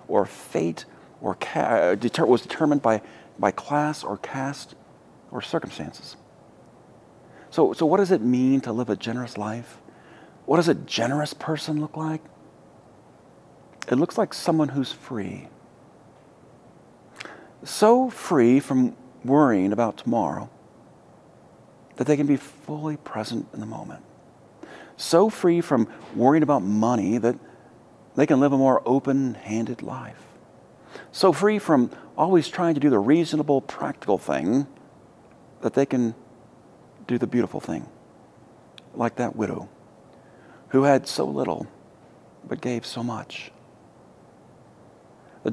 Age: 40-59